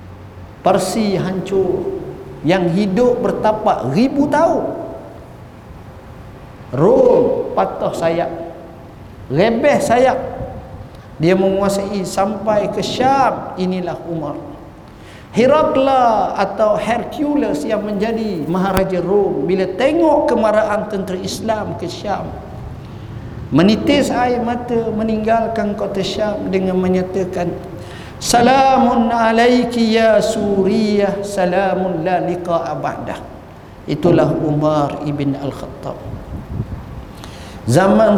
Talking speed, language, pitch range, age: 85 wpm, English, 165-230 Hz, 50-69